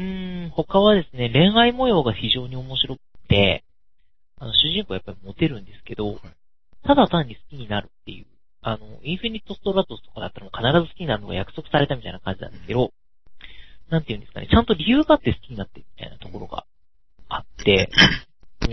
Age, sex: 40-59, male